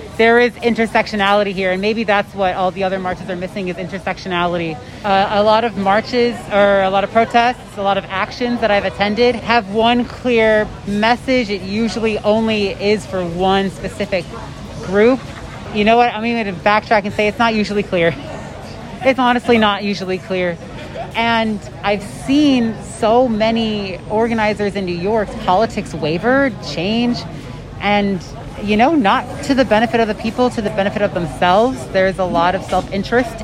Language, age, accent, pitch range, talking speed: English, 30-49, American, 190-230 Hz, 170 wpm